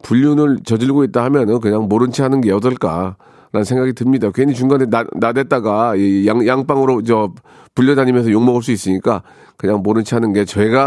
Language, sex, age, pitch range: Korean, male, 40-59, 115-150 Hz